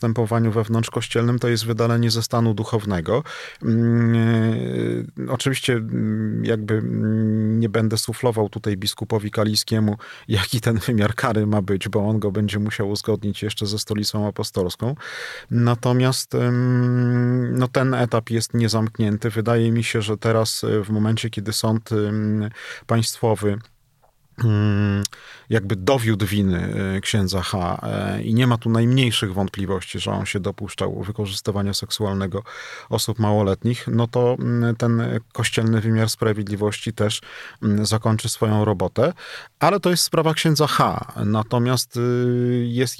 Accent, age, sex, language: native, 40-59, male, Polish